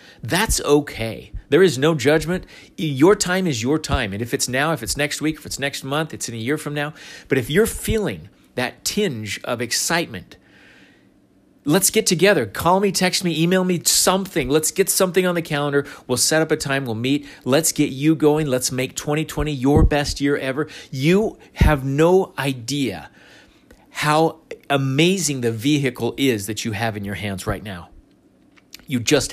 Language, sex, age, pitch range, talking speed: English, male, 40-59, 115-150 Hz, 185 wpm